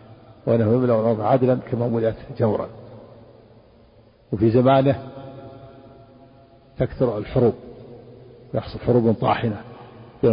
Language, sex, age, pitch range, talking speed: Arabic, male, 50-69, 110-130 Hz, 85 wpm